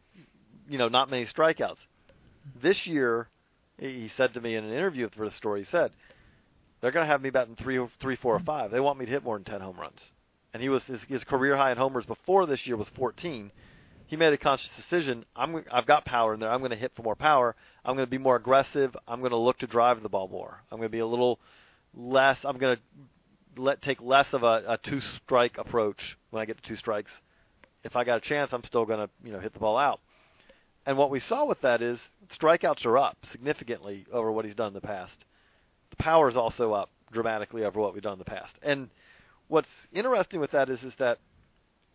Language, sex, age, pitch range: English, male, 40-59, 115-140 Hz